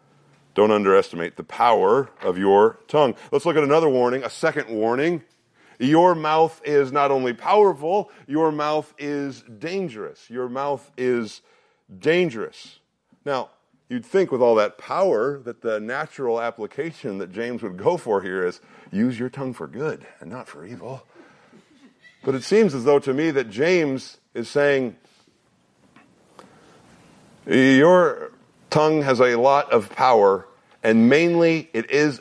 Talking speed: 145 wpm